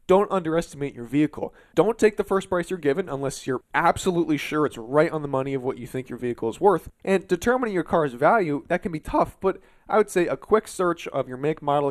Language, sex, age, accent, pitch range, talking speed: English, male, 20-39, American, 135-185 Hz, 240 wpm